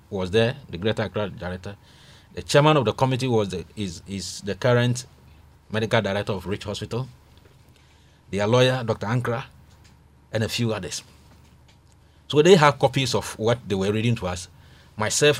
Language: English